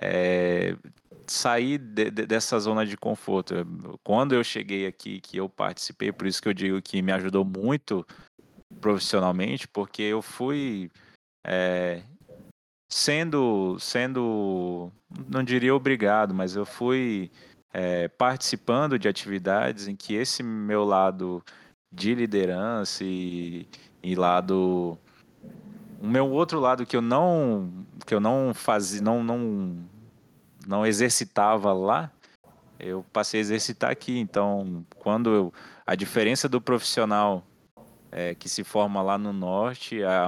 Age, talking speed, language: 20-39, 130 wpm, Portuguese